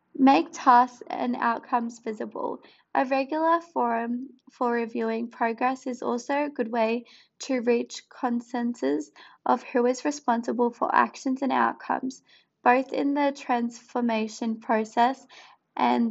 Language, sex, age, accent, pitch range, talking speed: English, female, 20-39, Australian, 235-270 Hz, 125 wpm